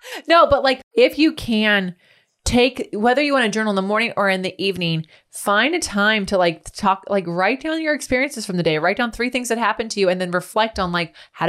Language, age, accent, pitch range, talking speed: English, 20-39, American, 160-210 Hz, 245 wpm